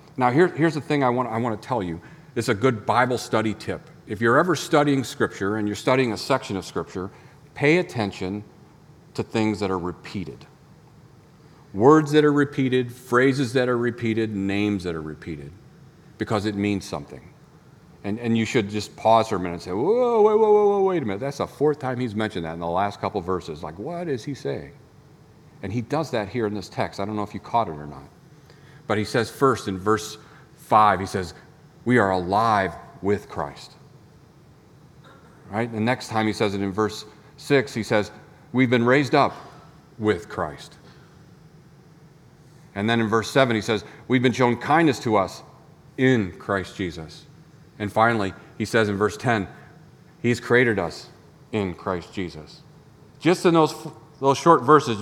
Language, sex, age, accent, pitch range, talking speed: English, male, 40-59, American, 105-150 Hz, 190 wpm